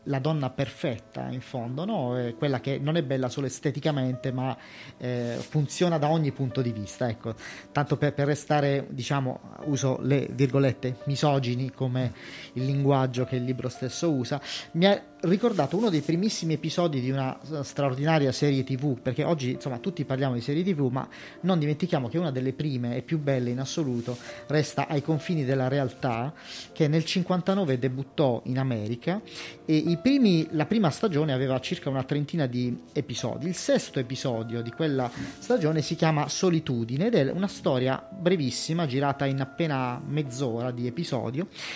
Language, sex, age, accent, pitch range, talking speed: Italian, male, 30-49, native, 130-160 Hz, 165 wpm